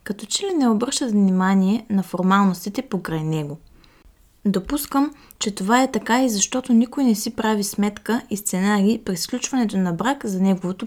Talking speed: 165 wpm